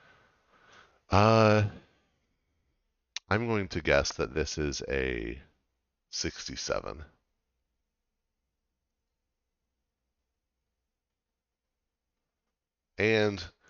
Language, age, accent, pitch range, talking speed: English, 40-59, American, 70-90 Hz, 50 wpm